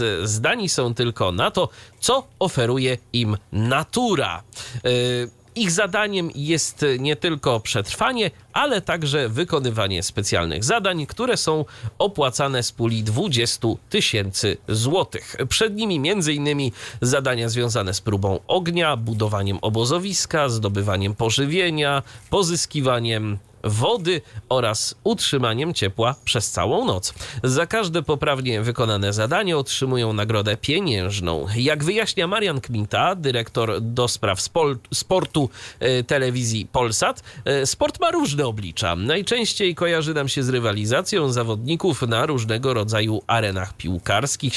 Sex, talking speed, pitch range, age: male, 115 wpm, 110-155 Hz, 30-49